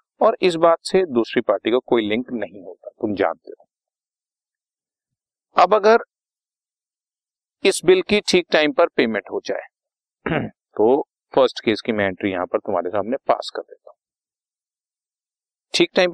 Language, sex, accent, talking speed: Hindi, male, native, 155 wpm